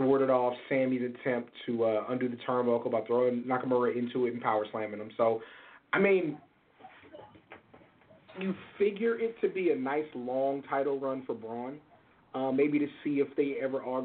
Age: 30-49